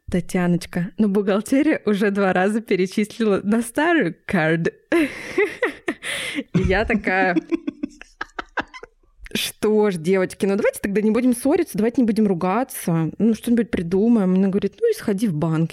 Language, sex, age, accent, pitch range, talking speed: Russian, female, 20-39, native, 175-215 Hz, 135 wpm